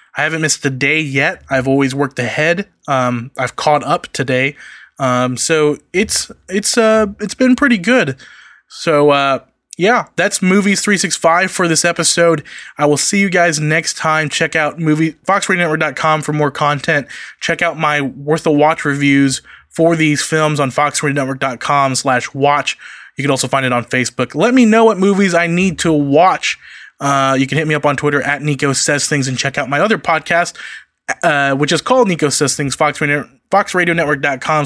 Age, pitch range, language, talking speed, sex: 20-39, 135-165 Hz, English, 180 wpm, male